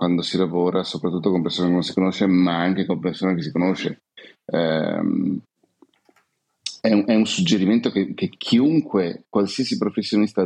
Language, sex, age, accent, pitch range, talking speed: Italian, male, 30-49, native, 90-105 Hz, 160 wpm